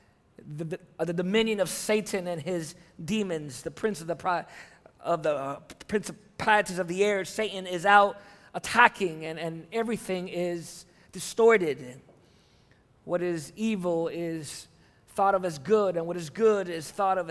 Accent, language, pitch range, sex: American, English, 170-215 Hz, male